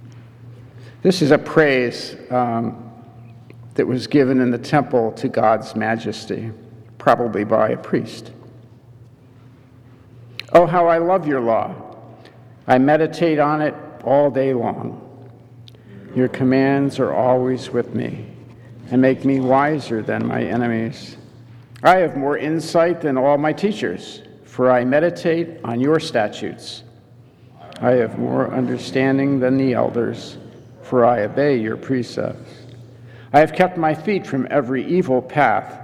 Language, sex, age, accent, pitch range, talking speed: English, male, 50-69, American, 120-140 Hz, 130 wpm